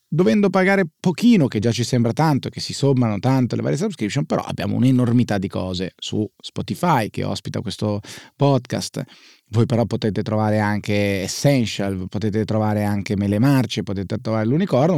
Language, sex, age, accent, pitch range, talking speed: Italian, male, 30-49, native, 110-145 Hz, 160 wpm